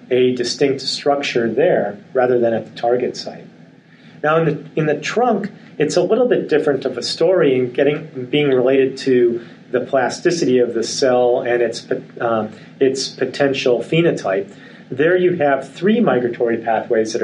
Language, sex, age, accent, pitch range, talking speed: English, male, 40-59, American, 120-150 Hz, 165 wpm